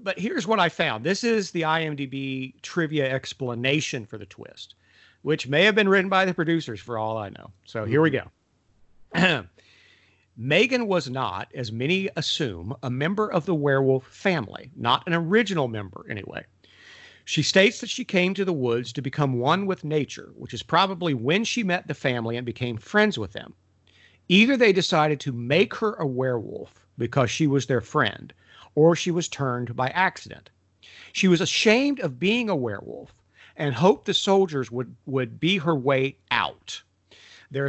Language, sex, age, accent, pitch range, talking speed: English, male, 50-69, American, 125-180 Hz, 175 wpm